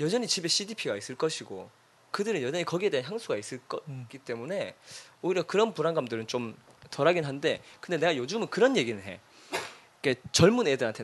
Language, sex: Korean, male